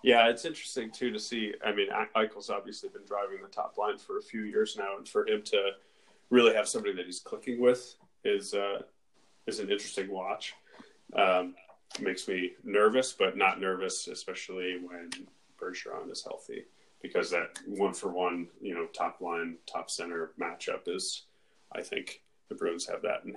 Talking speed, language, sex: 180 wpm, English, male